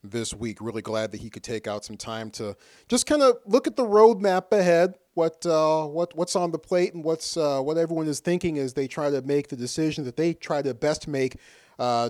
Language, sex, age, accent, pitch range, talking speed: English, male, 40-59, American, 125-185 Hz, 245 wpm